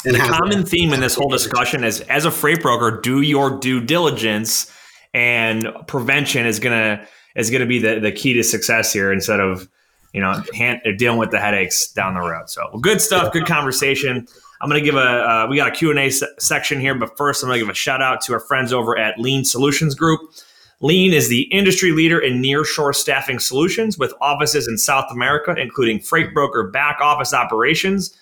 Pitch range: 120-150 Hz